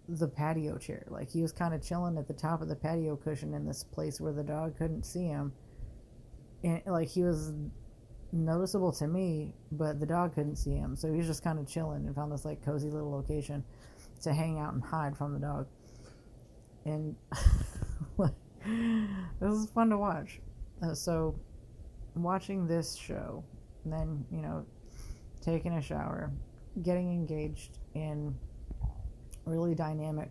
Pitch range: 140-160 Hz